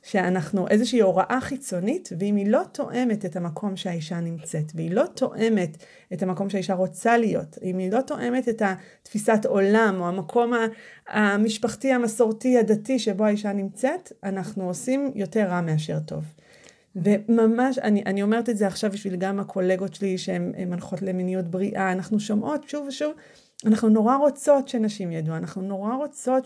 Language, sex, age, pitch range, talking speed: Hebrew, female, 30-49, 185-240 Hz, 160 wpm